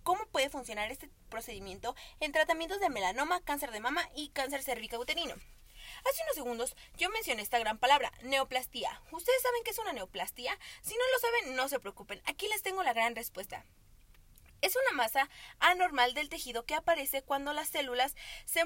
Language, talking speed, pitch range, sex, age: Spanish, 180 wpm, 245-340 Hz, female, 30-49